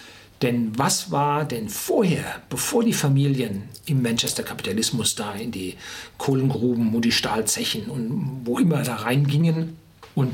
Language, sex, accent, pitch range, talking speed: German, male, German, 120-155 Hz, 135 wpm